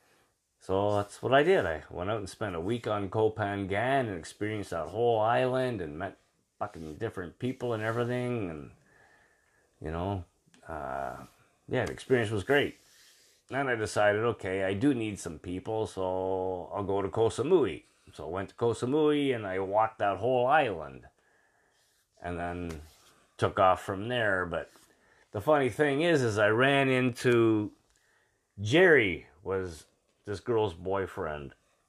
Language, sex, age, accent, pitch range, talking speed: English, male, 30-49, American, 95-140 Hz, 155 wpm